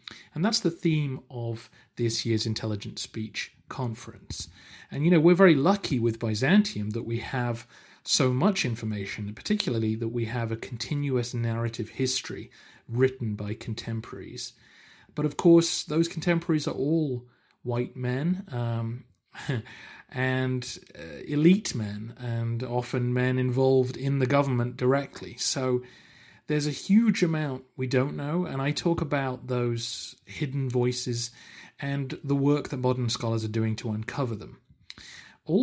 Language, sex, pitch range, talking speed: English, male, 115-150 Hz, 140 wpm